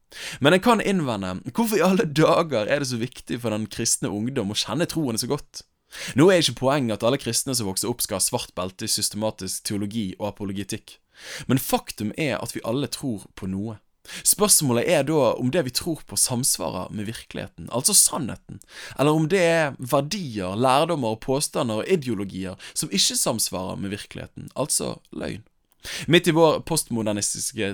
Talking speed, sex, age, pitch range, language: 185 wpm, male, 20-39, 100-145 Hz, English